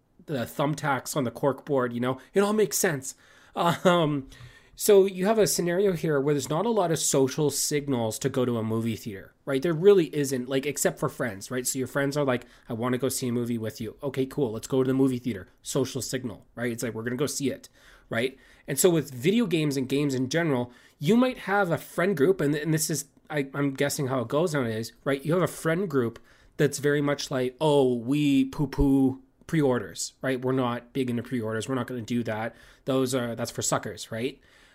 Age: 30-49